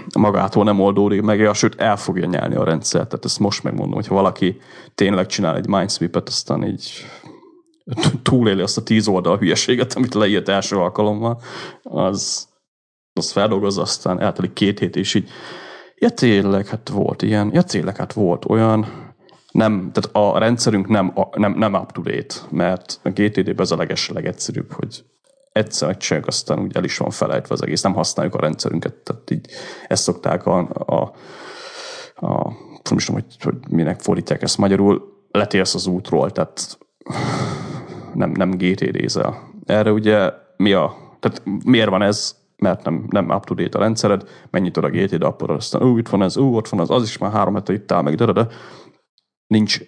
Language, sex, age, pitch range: Hungarian, male, 30-49, 95-120 Hz